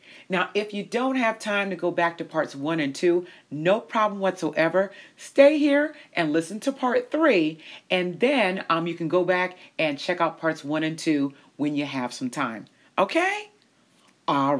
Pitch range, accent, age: 160-245 Hz, American, 40-59